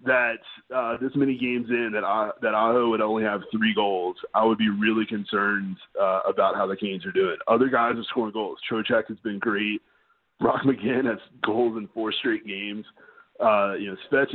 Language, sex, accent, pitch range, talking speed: English, male, American, 110-135 Hz, 200 wpm